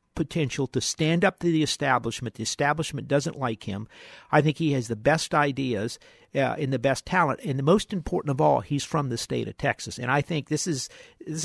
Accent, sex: American, male